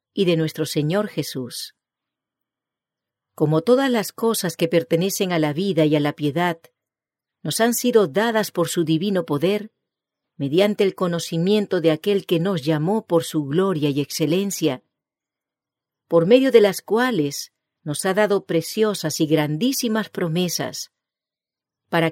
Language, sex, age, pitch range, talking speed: English, female, 50-69, 155-205 Hz, 140 wpm